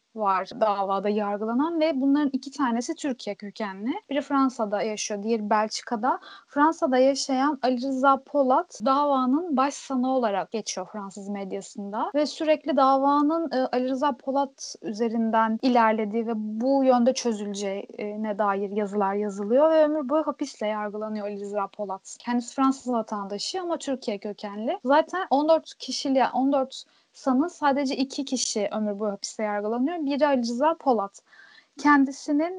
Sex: female